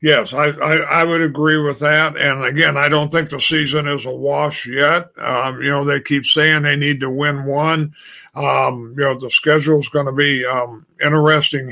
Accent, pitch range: American, 140-160 Hz